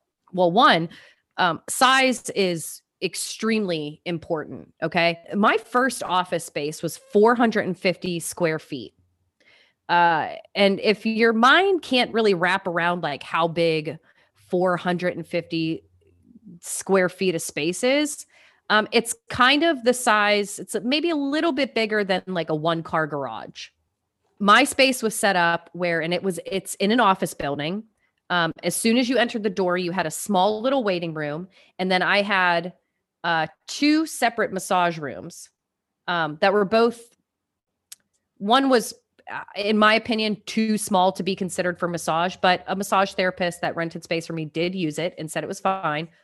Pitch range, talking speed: 165-220 Hz, 160 wpm